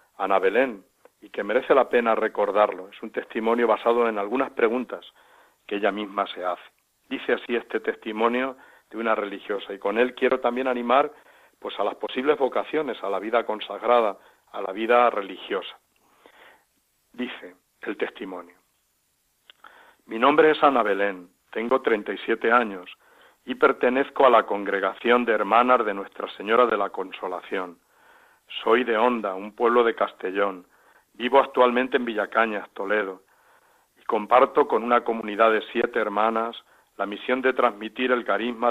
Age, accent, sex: 60-79, Spanish, male